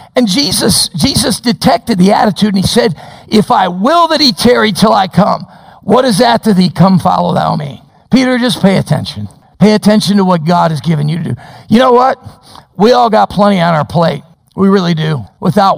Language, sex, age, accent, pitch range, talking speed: English, male, 50-69, American, 175-230 Hz, 210 wpm